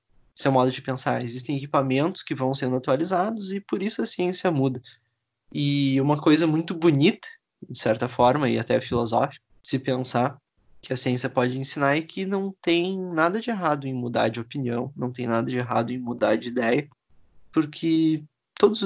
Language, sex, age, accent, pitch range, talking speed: Portuguese, male, 20-39, Brazilian, 125-160 Hz, 180 wpm